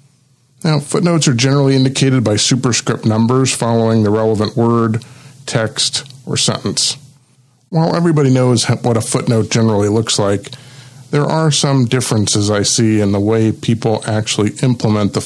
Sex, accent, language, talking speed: male, American, English, 145 wpm